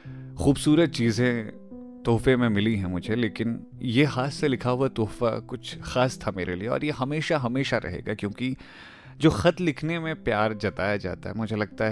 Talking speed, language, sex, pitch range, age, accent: 175 wpm, Hindi, male, 105-135 Hz, 30-49, native